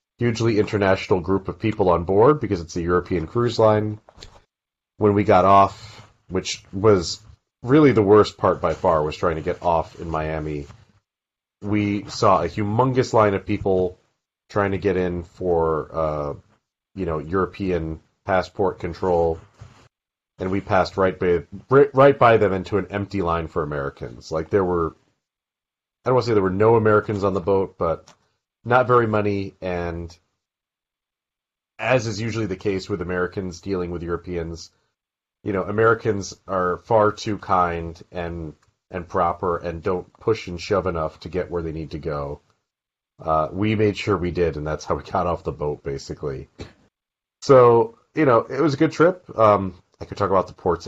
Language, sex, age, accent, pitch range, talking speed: English, male, 30-49, American, 85-105 Hz, 170 wpm